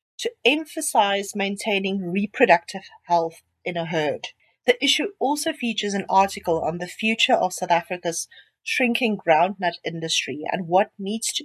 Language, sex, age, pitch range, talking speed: English, female, 40-59, 175-235 Hz, 140 wpm